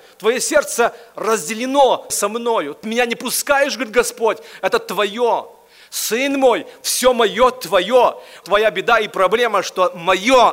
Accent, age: native, 40-59